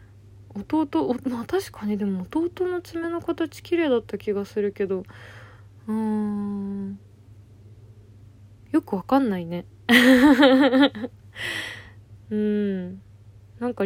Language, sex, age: Japanese, female, 20-39